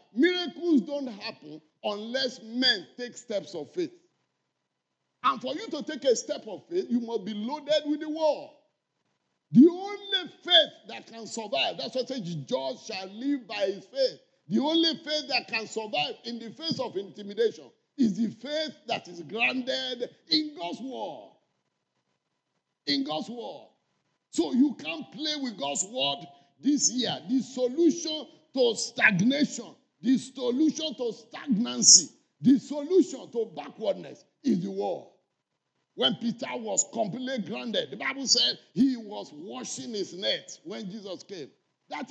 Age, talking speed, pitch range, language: 50-69, 150 wpm, 210-300 Hz, English